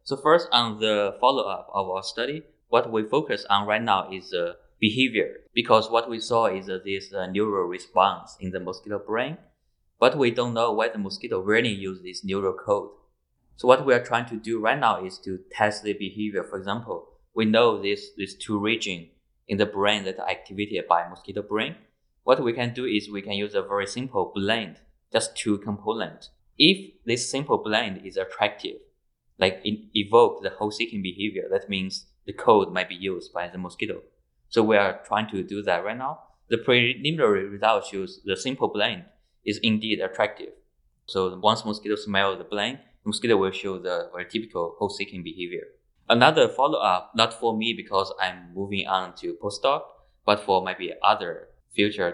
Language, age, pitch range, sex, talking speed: English, 20-39, 95-125 Hz, male, 190 wpm